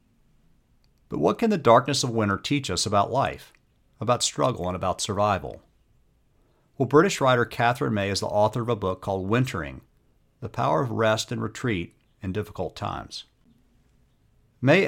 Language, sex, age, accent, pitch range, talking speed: English, male, 50-69, American, 100-130 Hz, 155 wpm